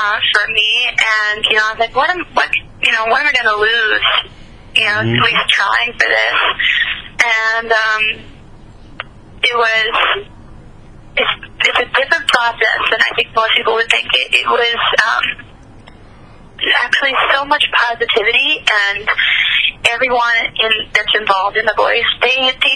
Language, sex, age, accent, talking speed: English, female, 30-49, American, 150 wpm